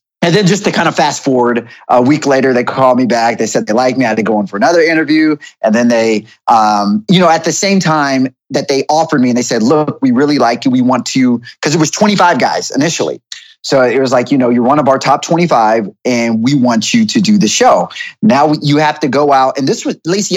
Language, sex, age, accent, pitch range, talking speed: English, male, 30-49, American, 135-195 Hz, 260 wpm